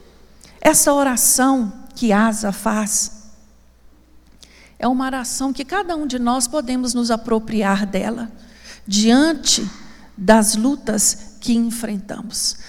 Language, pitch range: Portuguese, 230-335 Hz